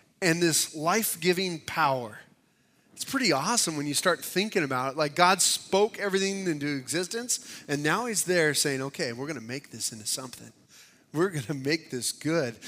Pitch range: 155-200 Hz